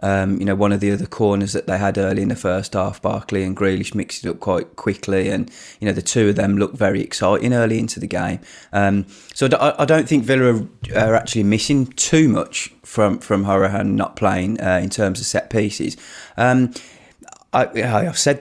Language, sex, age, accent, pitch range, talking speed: English, male, 20-39, British, 100-120 Hz, 210 wpm